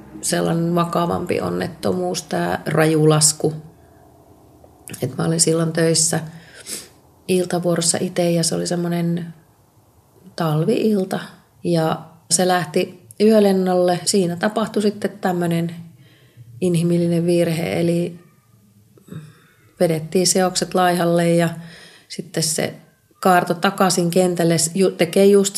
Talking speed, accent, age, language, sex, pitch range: 90 wpm, native, 30-49, Finnish, female, 155-180 Hz